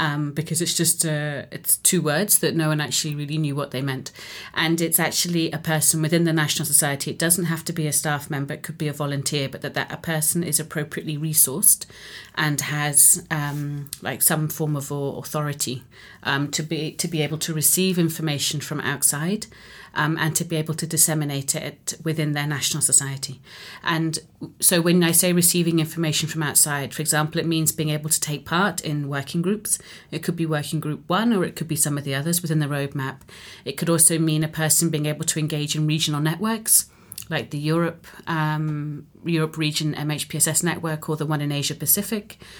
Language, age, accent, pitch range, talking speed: English, 40-59, British, 150-165 Hz, 200 wpm